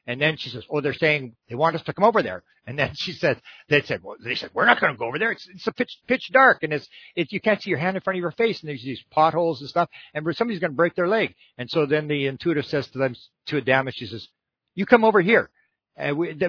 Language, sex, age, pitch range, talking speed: English, male, 50-69, 135-180 Hz, 290 wpm